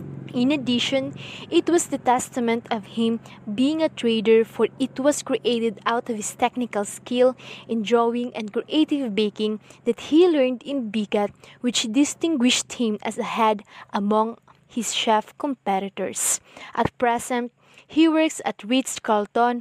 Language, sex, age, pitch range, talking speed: Filipino, female, 20-39, 215-260 Hz, 145 wpm